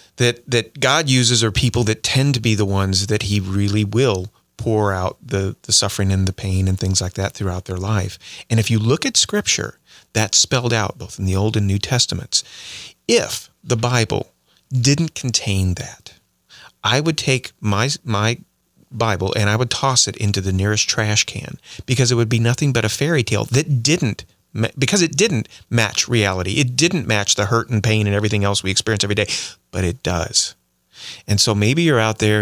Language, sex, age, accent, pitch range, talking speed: English, male, 40-59, American, 100-135 Hz, 200 wpm